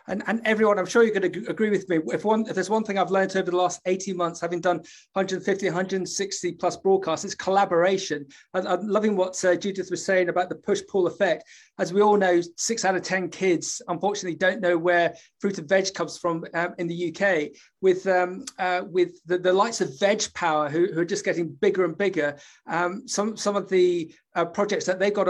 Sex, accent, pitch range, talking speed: male, British, 175-205 Hz, 225 wpm